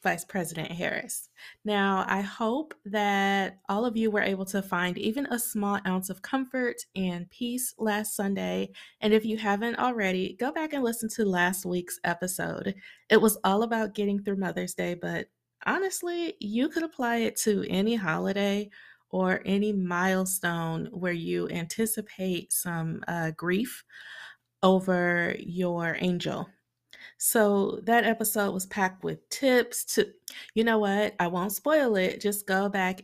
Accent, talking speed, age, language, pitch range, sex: American, 155 wpm, 20-39, English, 180-225 Hz, female